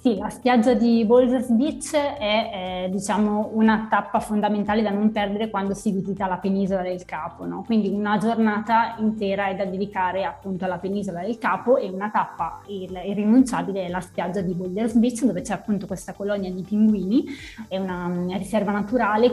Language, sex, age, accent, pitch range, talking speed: Italian, female, 20-39, native, 190-225 Hz, 180 wpm